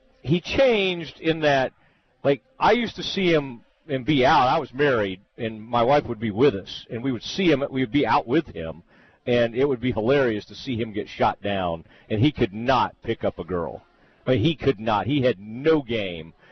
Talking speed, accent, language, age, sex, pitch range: 230 wpm, American, English, 50-69, male, 105-145 Hz